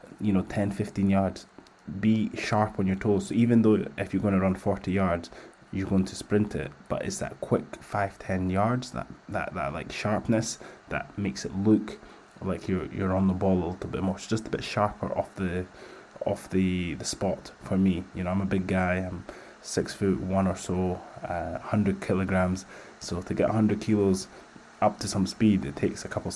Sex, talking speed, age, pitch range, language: male, 205 wpm, 20-39, 95-105 Hz, English